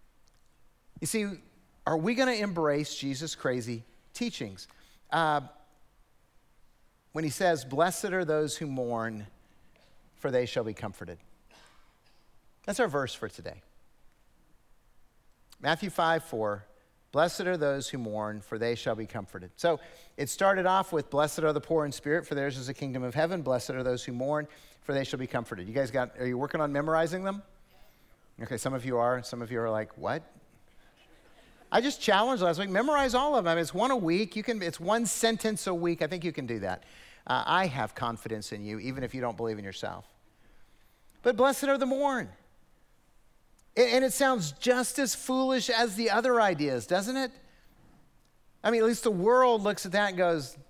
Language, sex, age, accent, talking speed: English, male, 50-69, American, 190 wpm